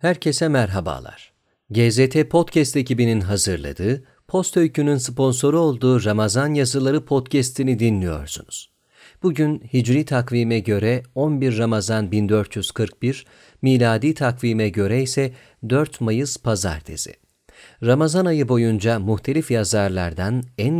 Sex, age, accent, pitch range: male, 40-59, native, 110-145 Hz